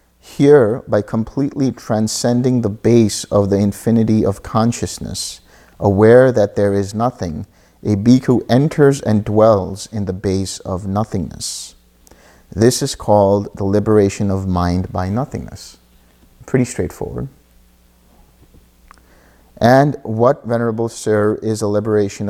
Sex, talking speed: male, 120 wpm